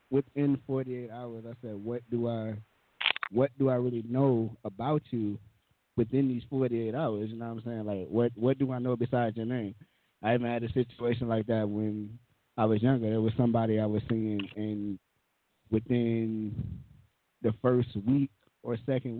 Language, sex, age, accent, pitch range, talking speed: English, male, 20-39, American, 110-125 Hz, 185 wpm